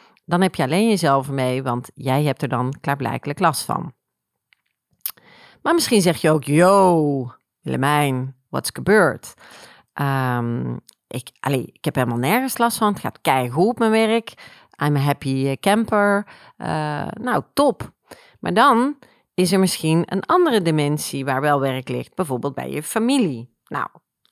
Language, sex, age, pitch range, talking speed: Dutch, female, 40-59, 145-190 Hz, 155 wpm